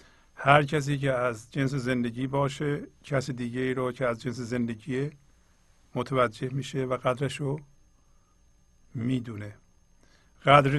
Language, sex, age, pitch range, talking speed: Persian, male, 50-69, 120-140 Hz, 120 wpm